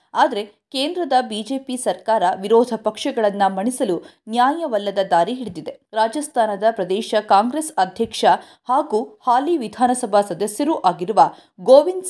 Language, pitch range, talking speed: Kannada, 200-265 Hz, 100 wpm